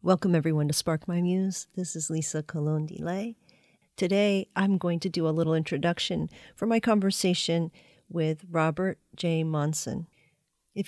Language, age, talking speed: English, 40-59, 150 wpm